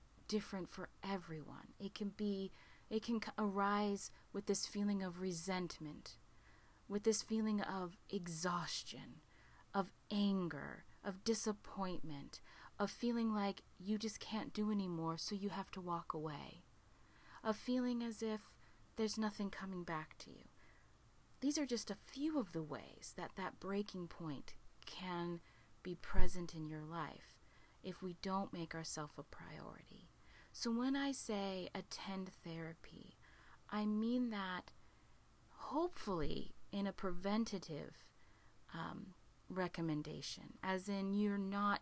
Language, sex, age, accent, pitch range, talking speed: English, female, 30-49, American, 160-205 Hz, 130 wpm